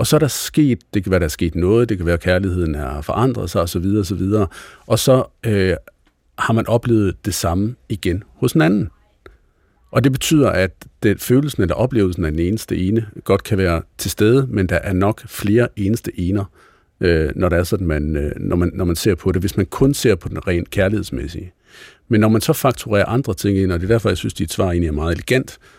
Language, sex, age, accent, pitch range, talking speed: Danish, male, 50-69, native, 85-110 Hz, 235 wpm